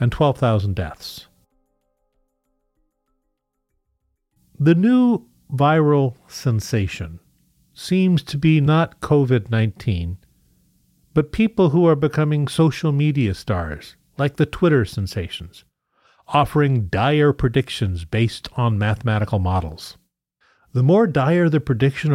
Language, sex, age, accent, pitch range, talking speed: English, male, 40-59, American, 105-145 Hz, 100 wpm